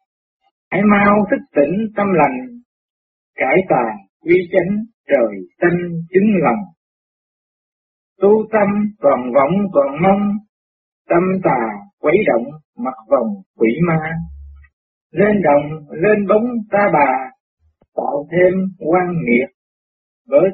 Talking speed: 115 wpm